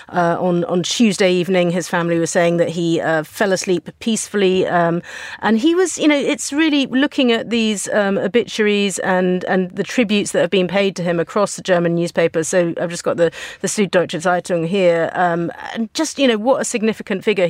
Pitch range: 175-215 Hz